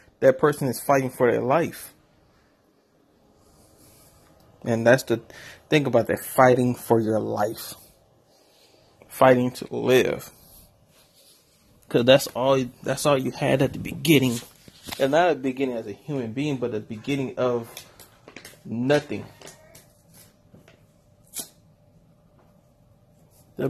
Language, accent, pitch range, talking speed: English, American, 110-135 Hz, 110 wpm